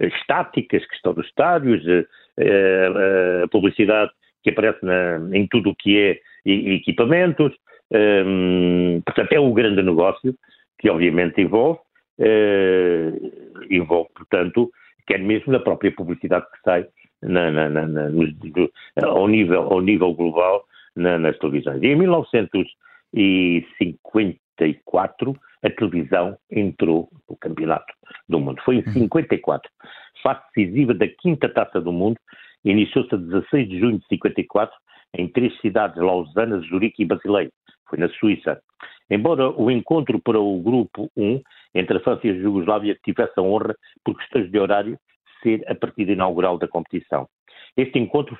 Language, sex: Portuguese, male